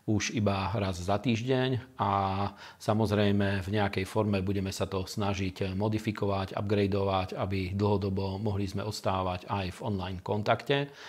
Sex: male